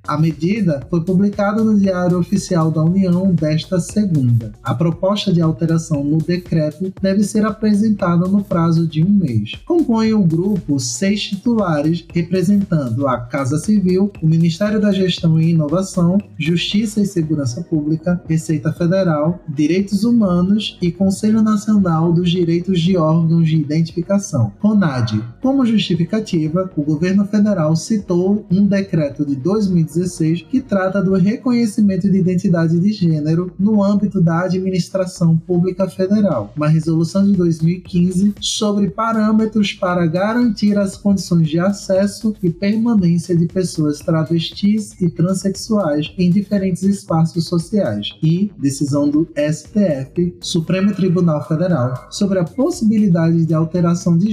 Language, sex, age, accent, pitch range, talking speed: Portuguese, male, 20-39, Brazilian, 165-200 Hz, 130 wpm